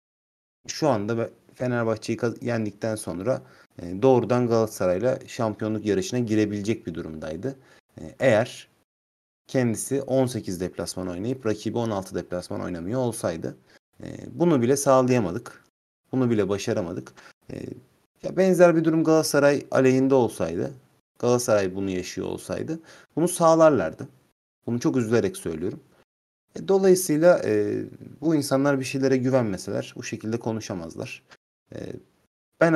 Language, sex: Turkish, male